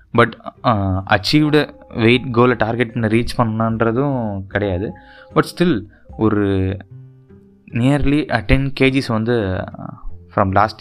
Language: Tamil